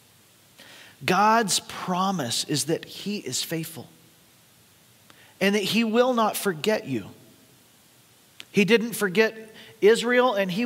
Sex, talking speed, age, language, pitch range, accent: male, 115 wpm, 40-59, English, 160-200 Hz, American